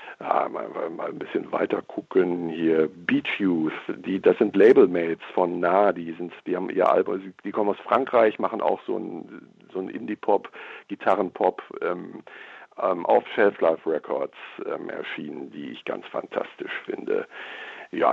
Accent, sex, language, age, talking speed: German, male, German, 60-79, 165 wpm